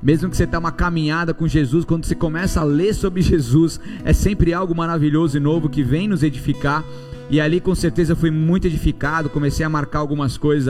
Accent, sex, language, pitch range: Brazilian, male, Portuguese, 150-175 Hz